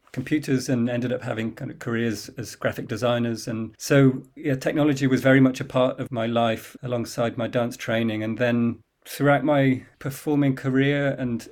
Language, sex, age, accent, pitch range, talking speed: English, male, 40-59, British, 115-135 Hz, 175 wpm